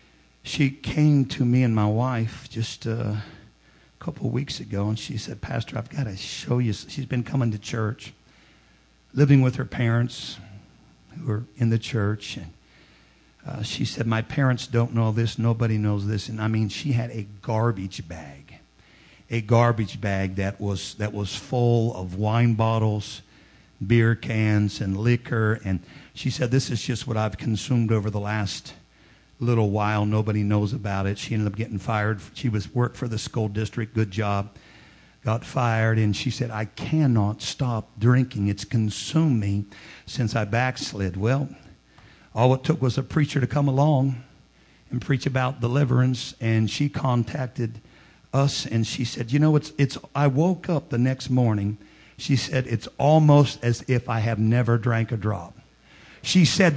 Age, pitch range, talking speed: 50-69, 105-130 Hz, 175 wpm